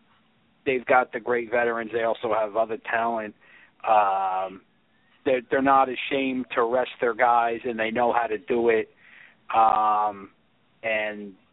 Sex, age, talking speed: male, 50-69, 145 wpm